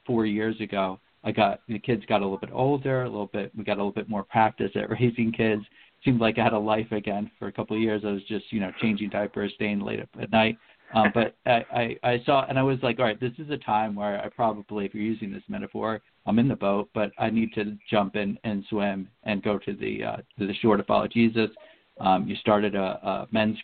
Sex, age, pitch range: male, 50-69, 100-115 Hz